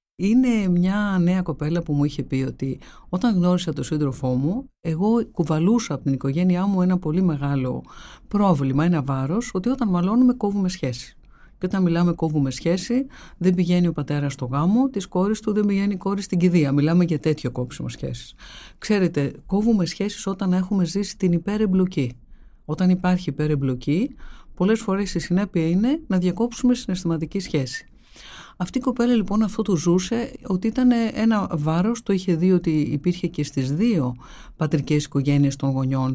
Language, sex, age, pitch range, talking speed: Greek, female, 50-69, 150-210 Hz, 165 wpm